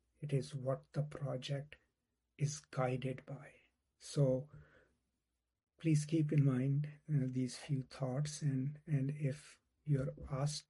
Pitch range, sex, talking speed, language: 130-150 Hz, male, 135 wpm, English